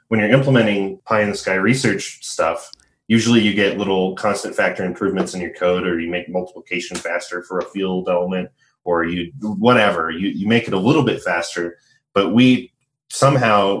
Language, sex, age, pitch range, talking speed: English, male, 30-49, 85-110 Hz, 170 wpm